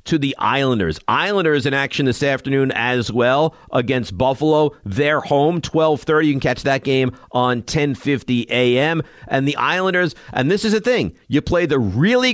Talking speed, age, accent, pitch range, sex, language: 170 wpm, 50-69, American, 115-155 Hz, male, English